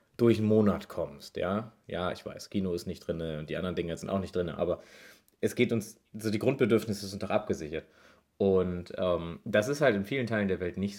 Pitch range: 95-115 Hz